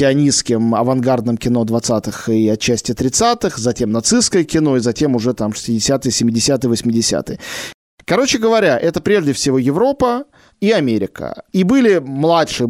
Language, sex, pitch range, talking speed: Russian, male, 135-190 Hz, 130 wpm